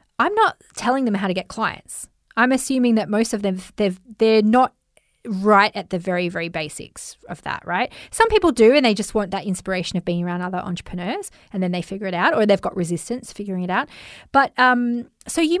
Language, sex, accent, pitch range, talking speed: English, female, Australian, 190-245 Hz, 220 wpm